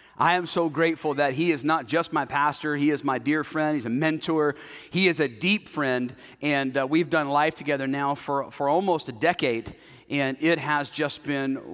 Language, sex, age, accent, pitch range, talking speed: English, male, 40-59, American, 145-190 Hz, 210 wpm